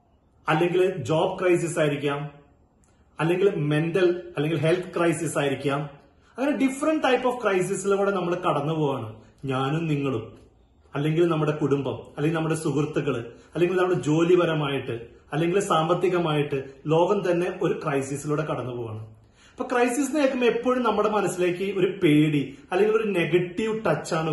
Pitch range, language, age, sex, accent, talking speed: 145-195 Hz, Malayalam, 30-49, male, native, 115 wpm